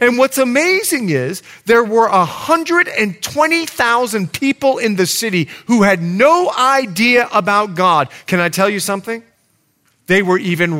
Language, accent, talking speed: English, American, 140 wpm